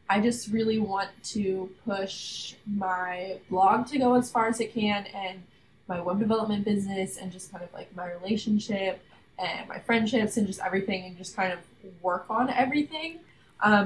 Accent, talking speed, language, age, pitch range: American, 180 wpm, English, 10-29, 185-215 Hz